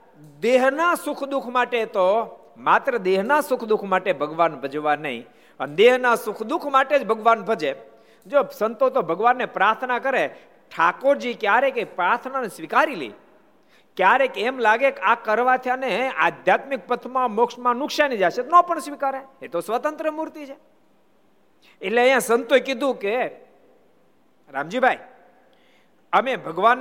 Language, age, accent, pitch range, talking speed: Gujarati, 50-69, native, 155-260 Hz, 45 wpm